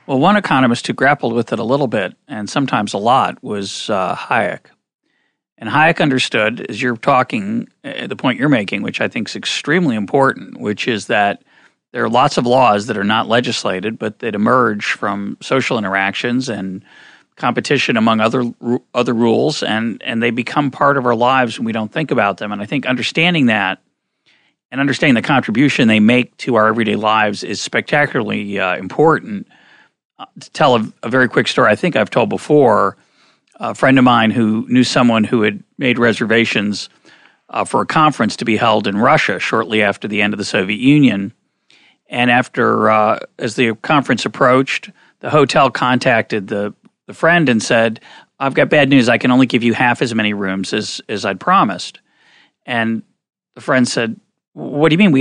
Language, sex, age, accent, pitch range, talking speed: English, male, 40-59, American, 110-135 Hz, 190 wpm